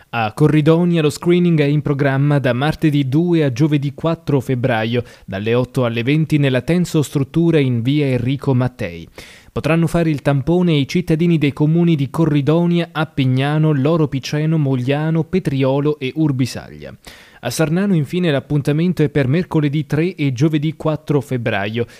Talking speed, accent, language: 145 wpm, native, Italian